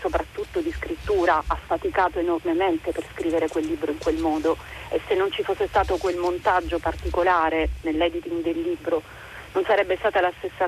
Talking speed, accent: 170 wpm, native